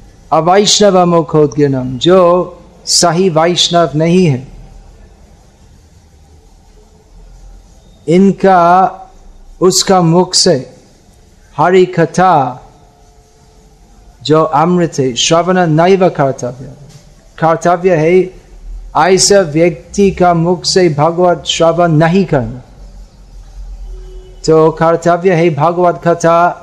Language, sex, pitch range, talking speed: Hindi, male, 125-175 Hz, 85 wpm